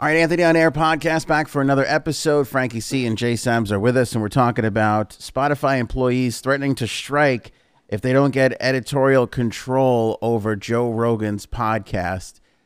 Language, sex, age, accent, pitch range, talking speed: English, male, 30-49, American, 105-135 Hz, 175 wpm